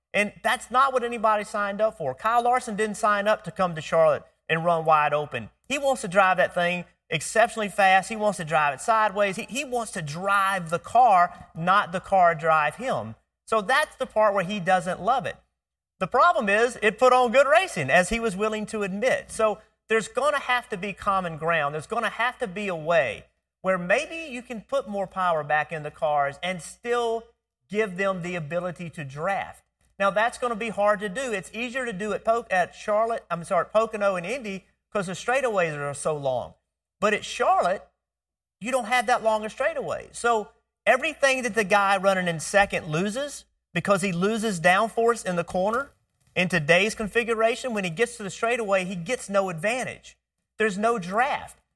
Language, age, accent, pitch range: English, 40-59, American, 180-235 Hz